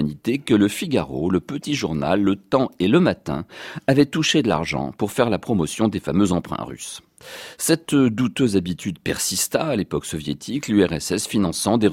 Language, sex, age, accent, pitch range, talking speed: French, male, 40-59, French, 85-125 Hz, 165 wpm